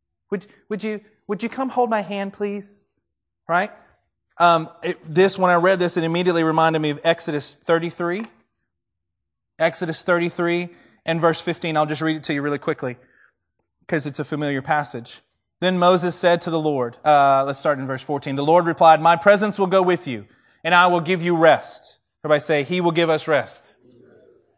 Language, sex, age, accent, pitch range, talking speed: English, male, 30-49, American, 135-190 Hz, 185 wpm